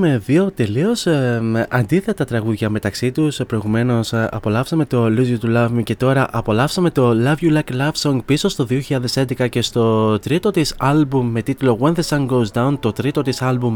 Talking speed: 195 wpm